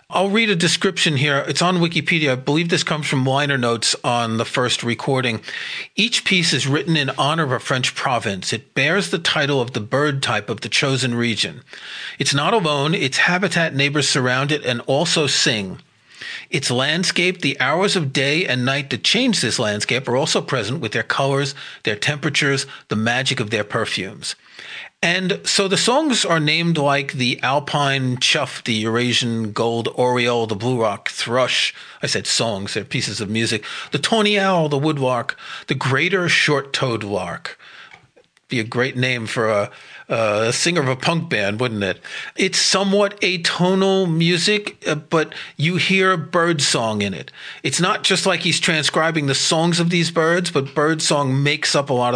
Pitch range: 125-170 Hz